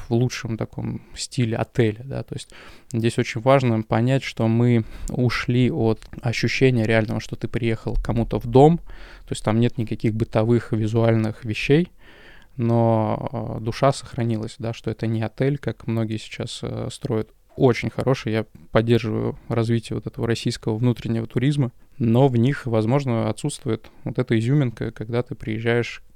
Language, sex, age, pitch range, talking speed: Russian, male, 20-39, 110-125 Hz, 150 wpm